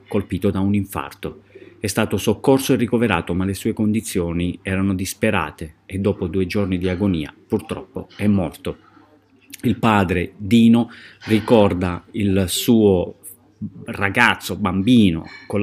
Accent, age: native, 30-49